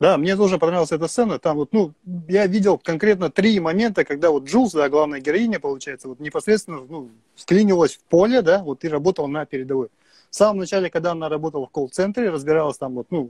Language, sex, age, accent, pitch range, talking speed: Russian, male, 30-49, native, 150-205 Hz, 165 wpm